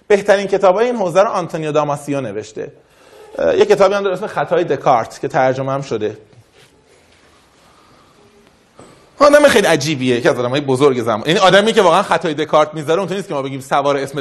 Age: 30-49